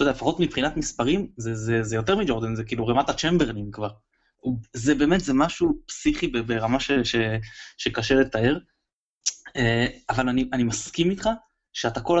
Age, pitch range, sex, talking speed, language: 20-39, 115-170 Hz, male, 155 wpm, Hebrew